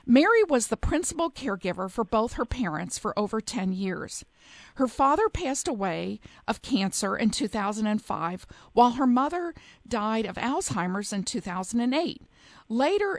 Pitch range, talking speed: 200-265 Hz, 135 wpm